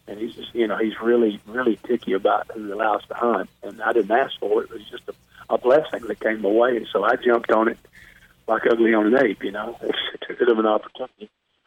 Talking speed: 265 wpm